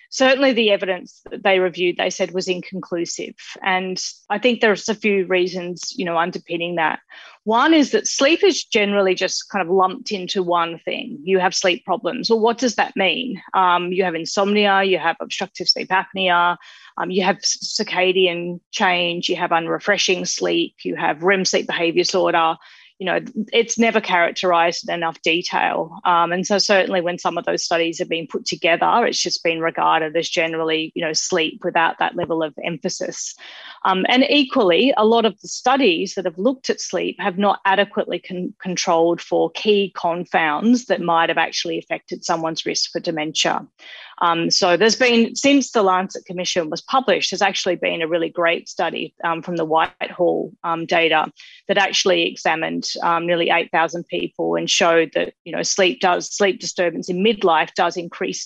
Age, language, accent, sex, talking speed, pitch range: 30-49, English, Australian, female, 180 wpm, 170-200 Hz